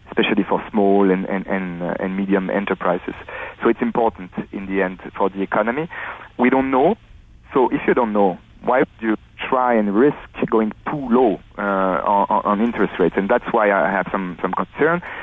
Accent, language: French, English